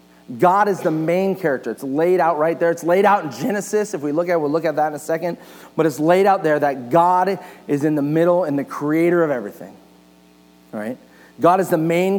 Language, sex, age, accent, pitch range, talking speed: English, male, 40-59, American, 145-190 Hz, 240 wpm